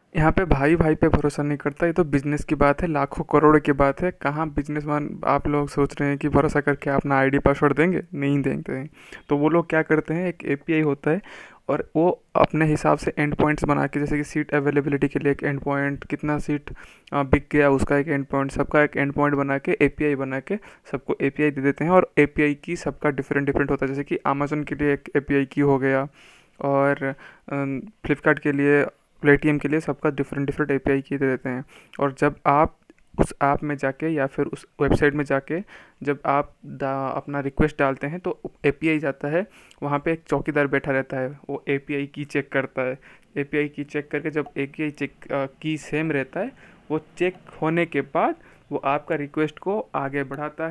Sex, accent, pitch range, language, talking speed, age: male, native, 140-155 Hz, Hindi, 210 wpm, 20-39